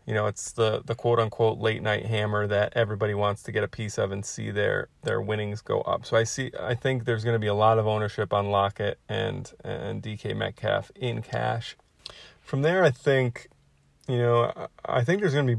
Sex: male